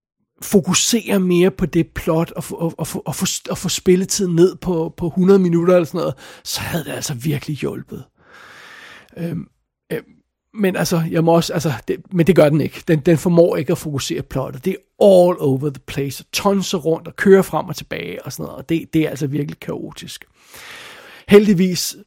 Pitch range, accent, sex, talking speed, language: 150-185 Hz, native, male, 200 wpm, Danish